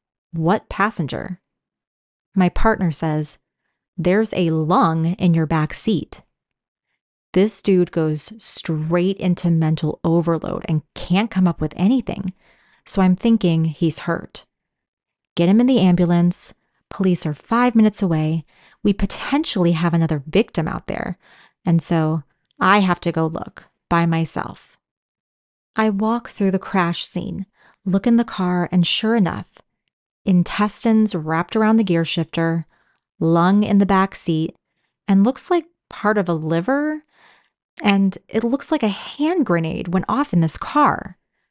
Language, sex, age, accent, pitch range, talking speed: English, female, 30-49, American, 165-205 Hz, 145 wpm